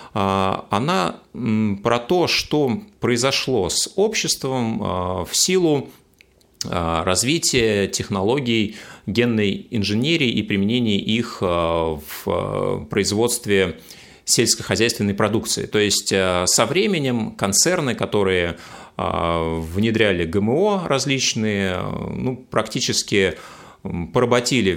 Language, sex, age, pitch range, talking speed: Russian, male, 30-49, 90-125 Hz, 80 wpm